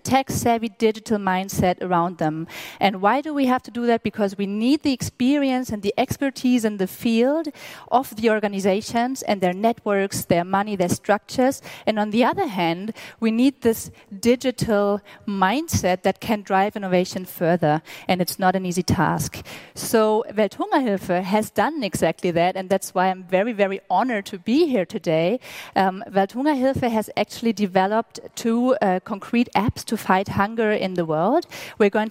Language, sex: English, female